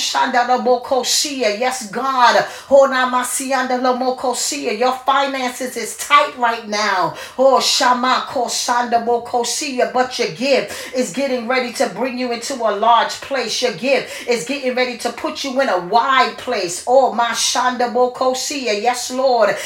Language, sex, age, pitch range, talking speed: English, female, 40-59, 240-275 Hz, 120 wpm